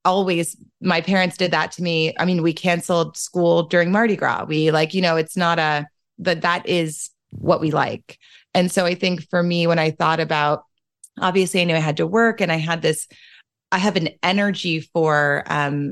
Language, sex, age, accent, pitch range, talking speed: English, female, 30-49, American, 155-180 Hz, 205 wpm